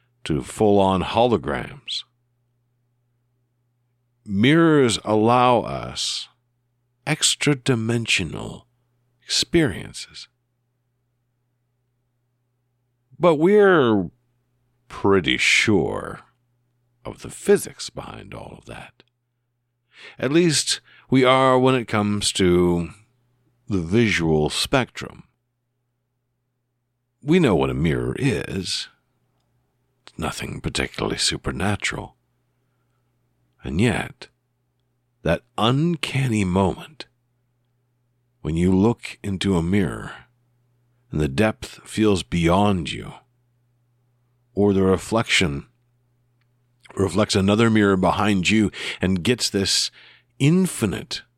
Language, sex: English, male